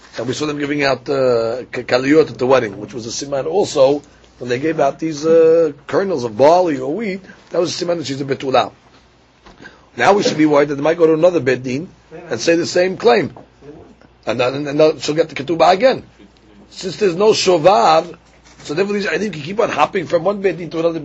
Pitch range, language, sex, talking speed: 140-180 Hz, English, male, 220 wpm